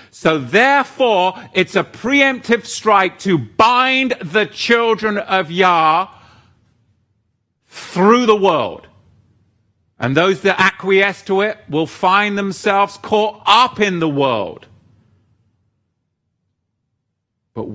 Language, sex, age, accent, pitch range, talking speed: English, male, 50-69, British, 110-165 Hz, 100 wpm